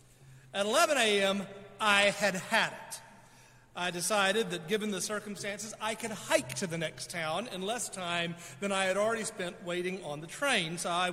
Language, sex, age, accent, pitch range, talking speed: English, male, 40-59, American, 150-205 Hz, 185 wpm